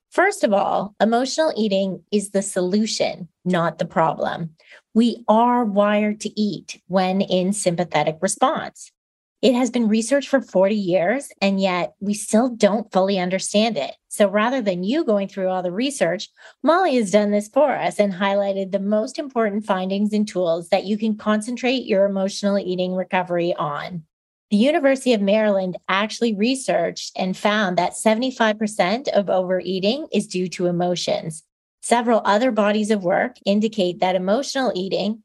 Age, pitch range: 30-49, 185-220 Hz